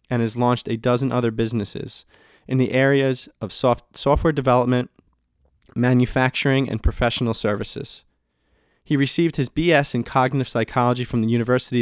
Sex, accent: male, American